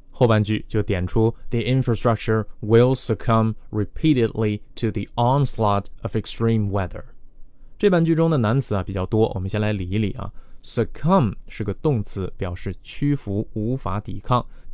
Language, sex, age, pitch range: Chinese, male, 20-39, 105-130 Hz